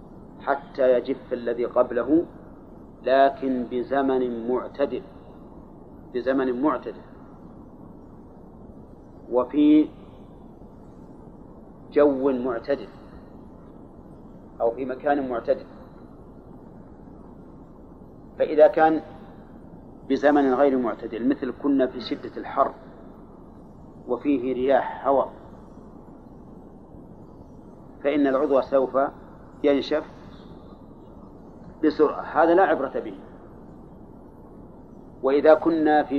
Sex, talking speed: male, 70 wpm